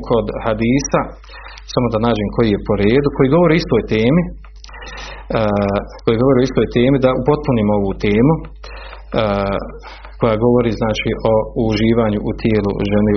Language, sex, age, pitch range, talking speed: Croatian, male, 40-59, 105-130 Hz, 150 wpm